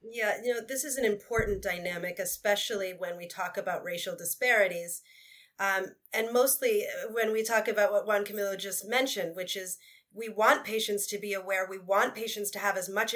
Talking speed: 190 wpm